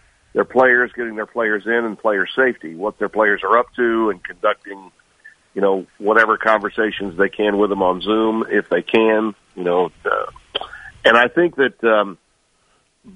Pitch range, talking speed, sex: 100-120 Hz, 170 wpm, male